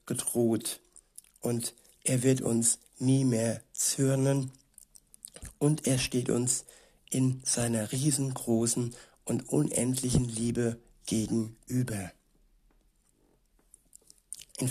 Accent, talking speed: German, 80 wpm